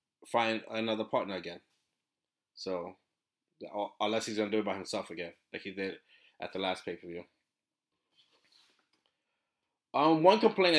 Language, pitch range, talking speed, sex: English, 105-130 Hz, 140 wpm, male